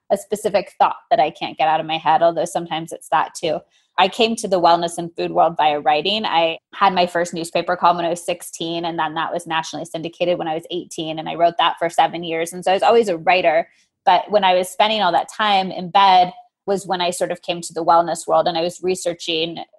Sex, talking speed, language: female, 255 wpm, English